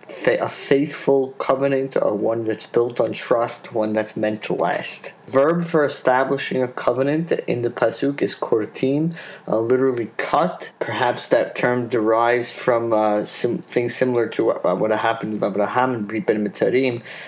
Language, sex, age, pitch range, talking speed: English, male, 20-39, 115-135 Hz, 155 wpm